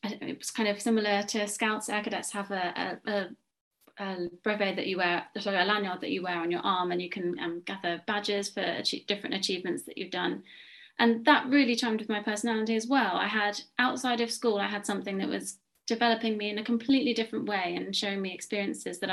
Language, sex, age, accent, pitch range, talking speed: English, female, 30-49, British, 185-220 Hz, 215 wpm